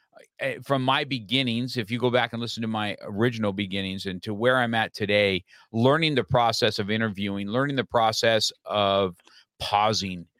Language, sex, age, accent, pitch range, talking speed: English, male, 50-69, American, 100-120 Hz, 165 wpm